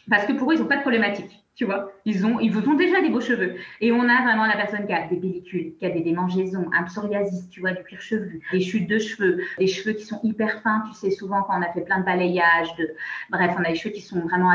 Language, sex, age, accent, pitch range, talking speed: French, female, 20-39, French, 185-230 Hz, 280 wpm